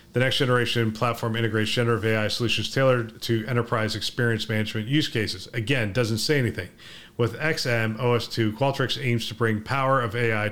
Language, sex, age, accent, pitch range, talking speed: English, male, 40-59, American, 110-125 Hz, 165 wpm